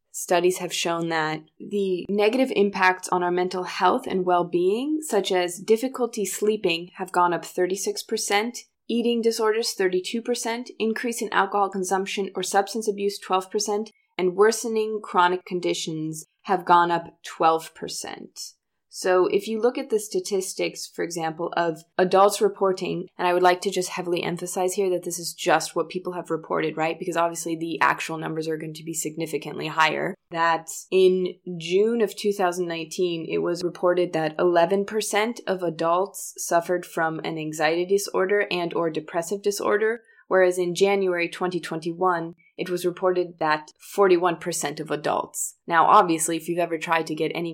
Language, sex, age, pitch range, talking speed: English, female, 20-39, 170-200 Hz, 155 wpm